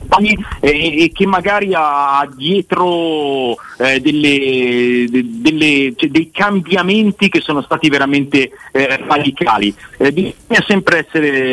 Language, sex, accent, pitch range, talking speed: Italian, male, native, 130-165 Hz, 90 wpm